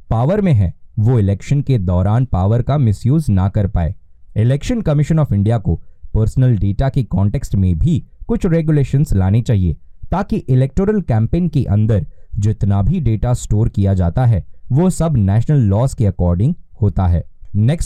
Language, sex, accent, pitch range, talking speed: Hindi, male, native, 100-135 Hz, 125 wpm